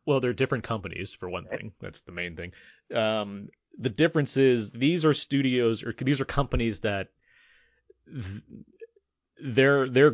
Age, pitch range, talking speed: 30-49, 90-120 Hz, 155 wpm